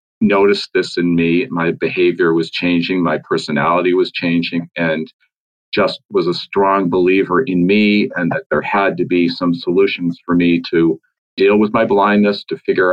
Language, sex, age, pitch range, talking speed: English, male, 50-69, 85-105 Hz, 170 wpm